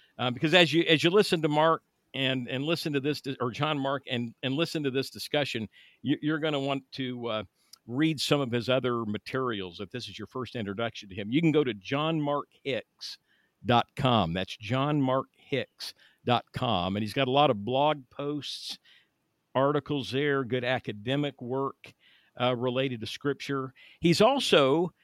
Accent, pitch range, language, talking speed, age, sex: American, 125-155 Hz, English, 170 wpm, 50-69, male